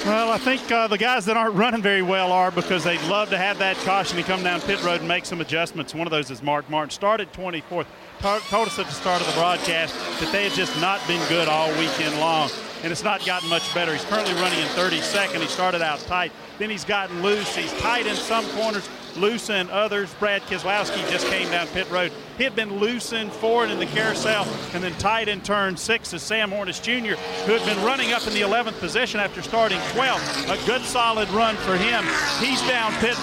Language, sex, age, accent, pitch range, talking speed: English, male, 40-59, American, 185-220 Hz, 230 wpm